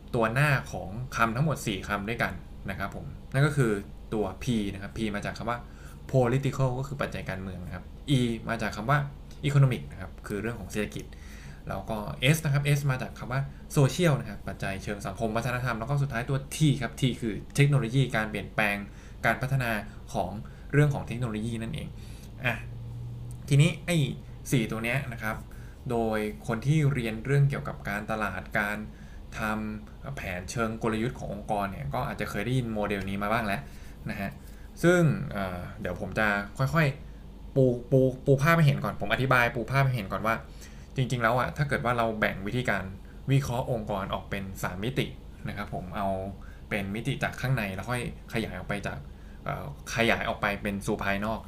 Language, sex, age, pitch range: Thai, male, 20-39, 100-130 Hz